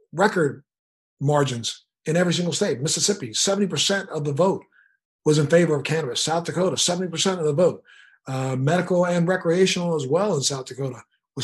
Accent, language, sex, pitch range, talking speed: American, English, male, 140-170 Hz, 170 wpm